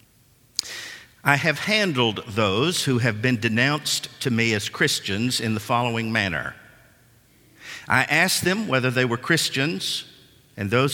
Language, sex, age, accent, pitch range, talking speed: English, male, 50-69, American, 120-150 Hz, 135 wpm